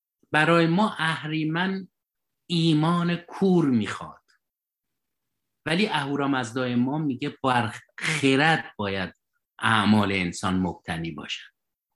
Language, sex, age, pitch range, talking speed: Persian, male, 50-69, 105-155 Hz, 90 wpm